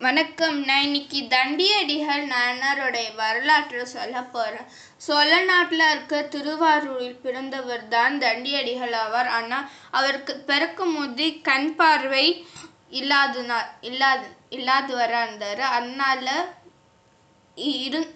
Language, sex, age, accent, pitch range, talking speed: Tamil, female, 20-39, native, 245-300 Hz, 95 wpm